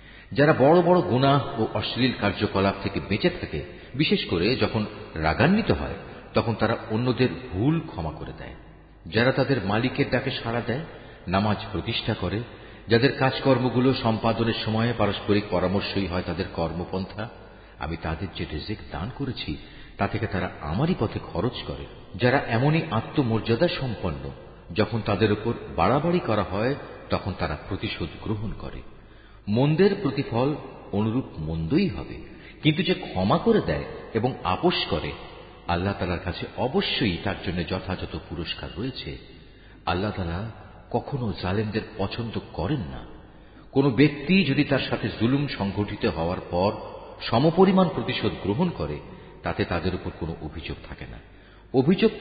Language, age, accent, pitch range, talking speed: Bengali, 50-69, native, 95-130 Hz, 130 wpm